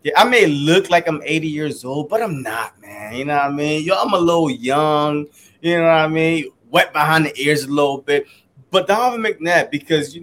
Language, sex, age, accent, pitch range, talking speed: English, male, 20-39, American, 135-165 Hz, 230 wpm